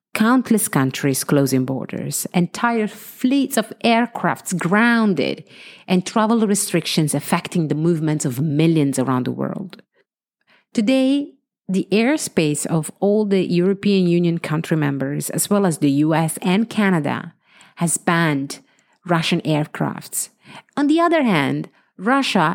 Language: English